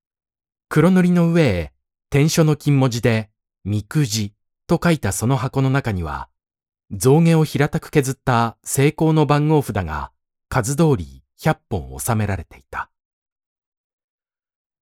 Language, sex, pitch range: Japanese, male, 95-145 Hz